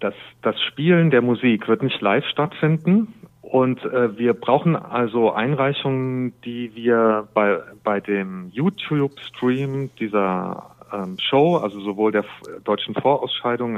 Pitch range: 105-130 Hz